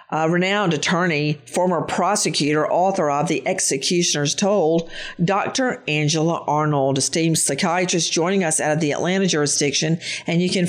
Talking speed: 140 wpm